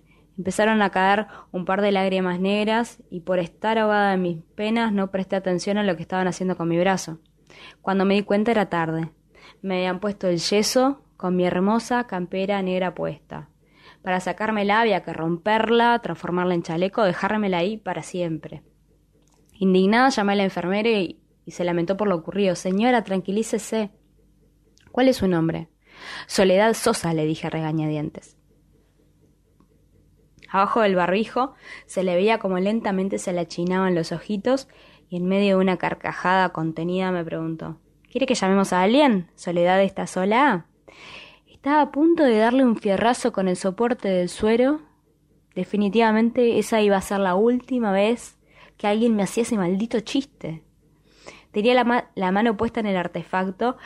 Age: 20-39